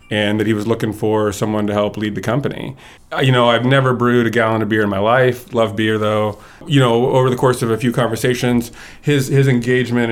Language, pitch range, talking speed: English, 95-115 Hz, 230 wpm